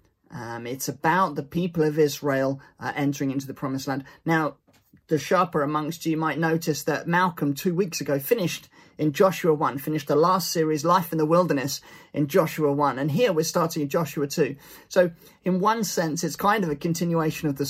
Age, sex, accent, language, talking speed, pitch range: 30-49, male, British, English, 195 wpm, 145-175 Hz